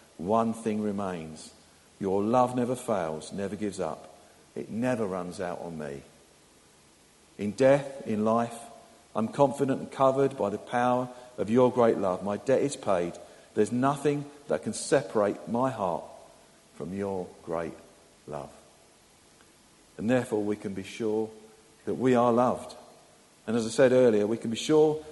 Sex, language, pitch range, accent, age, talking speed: male, English, 105-135 Hz, British, 50-69, 155 wpm